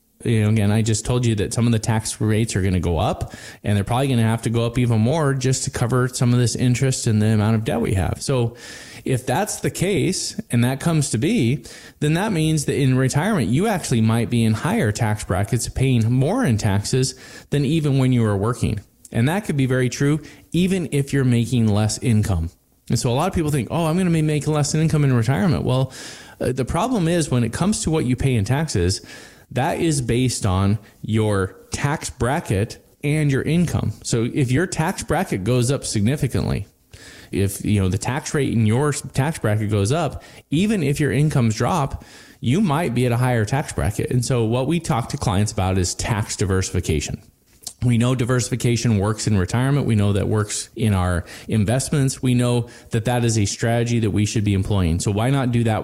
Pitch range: 110-135 Hz